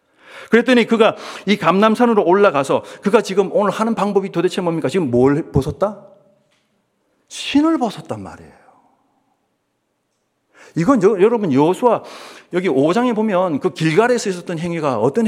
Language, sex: Korean, male